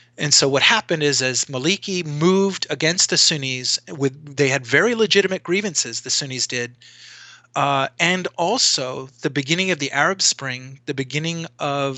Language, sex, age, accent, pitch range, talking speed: English, male, 30-49, American, 130-160 Hz, 160 wpm